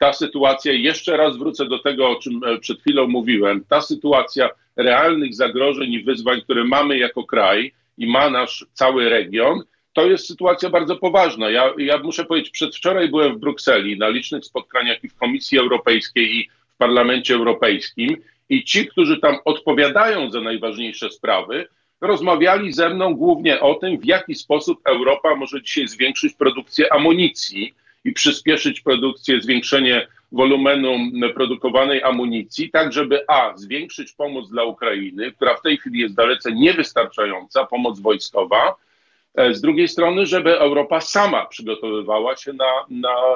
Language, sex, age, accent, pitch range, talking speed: Polish, male, 40-59, native, 125-180 Hz, 150 wpm